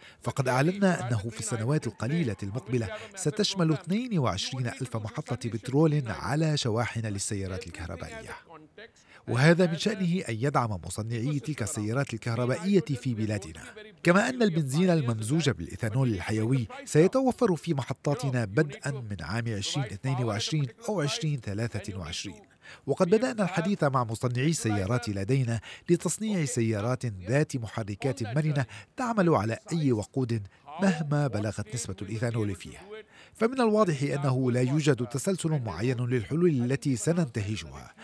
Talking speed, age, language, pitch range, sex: 115 wpm, 40-59, Arabic, 115-160 Hz, male